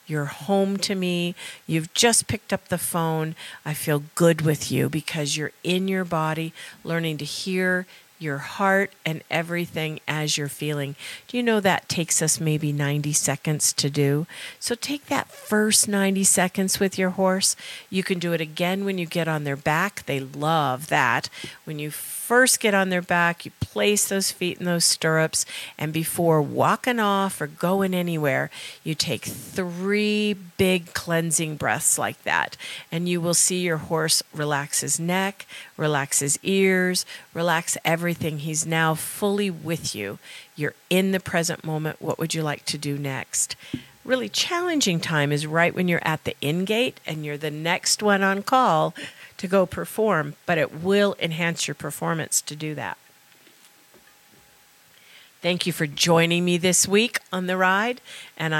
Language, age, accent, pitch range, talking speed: English, 50-69, American, 150-190 Hz, 170 wpm